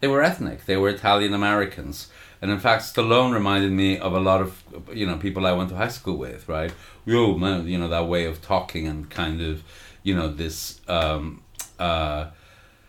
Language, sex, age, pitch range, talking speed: English, male, 40-59, 90-120 Hz, 190 wpm